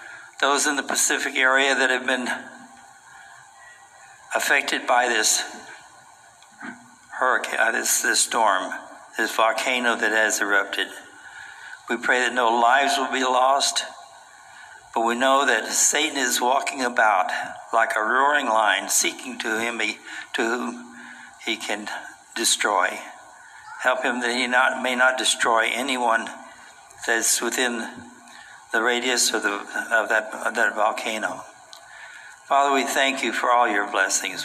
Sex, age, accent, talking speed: male, 60-79, American, 135 wpm